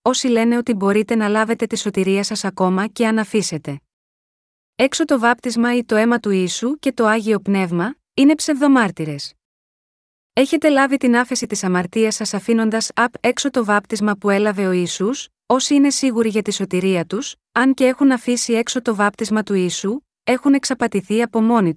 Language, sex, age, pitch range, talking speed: Greek, female, 30-49, 200-255 Hz, 175 wpm